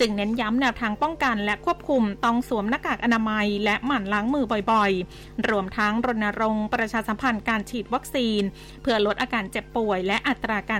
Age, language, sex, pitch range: 20-39, Thai, female, 210-245 Hz